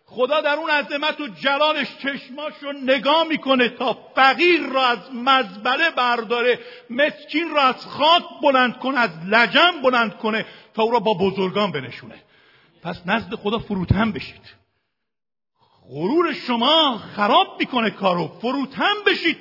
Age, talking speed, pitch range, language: 50-69, 135 wpm, 170-265 Hz, Persian